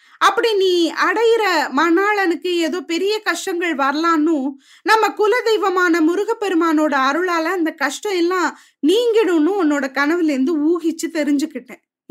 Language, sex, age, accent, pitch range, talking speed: Tamil, female, 20-39, native, 285-380 Hz, 110 wpm